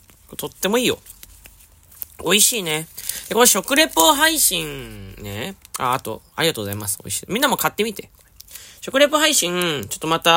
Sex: male